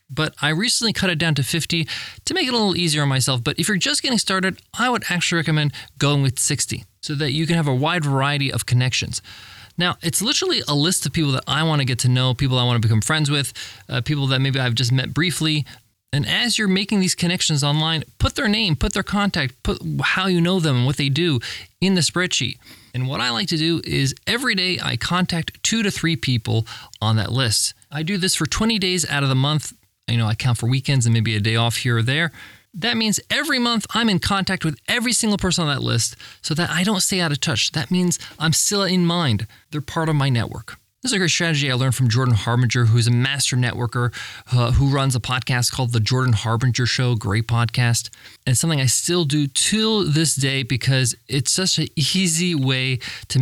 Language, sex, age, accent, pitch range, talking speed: English, male, 20-39, American, 120-170 Hz, 235 wpm